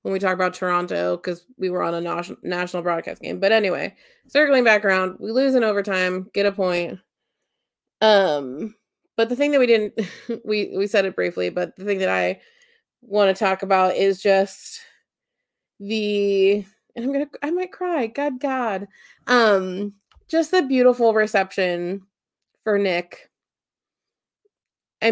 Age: 30-49